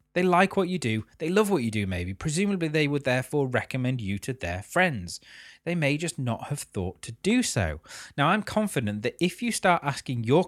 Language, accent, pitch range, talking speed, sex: English, British, 100-160 Hz, 220 wpm, male